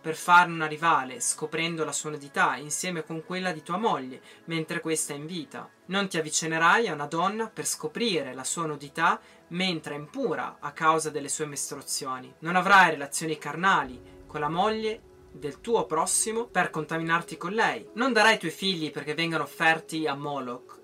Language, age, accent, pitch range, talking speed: Italian, 20-39, native, 150-195 Hz, 180 wpm